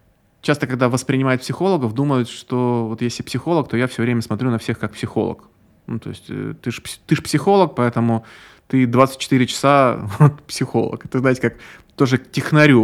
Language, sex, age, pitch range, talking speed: Russian, male, 20-39, 115-135 Hz, 165 wpm